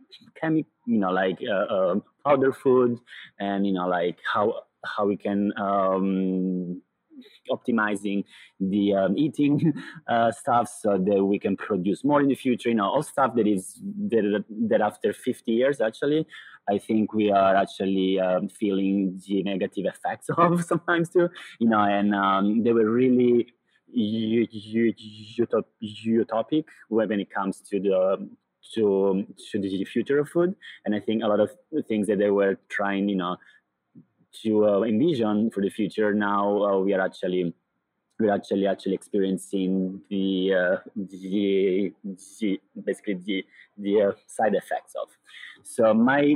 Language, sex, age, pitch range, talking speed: English, male, 30-49, 100-130 Hz, 155 wpm